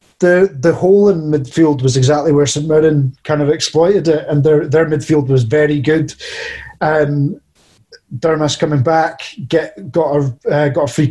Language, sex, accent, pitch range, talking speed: English, male, British, 135-160 Hz, 175 wpm